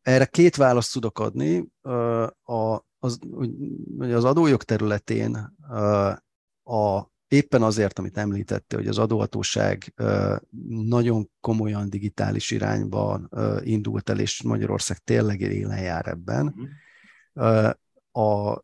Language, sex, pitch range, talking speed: Hungarian, male, 105-120 Hz, 95 wpm